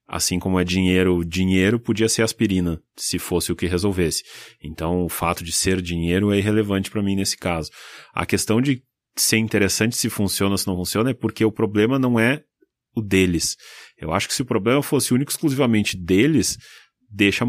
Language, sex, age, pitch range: Portuguese, male, 30-49, 90-115 Hz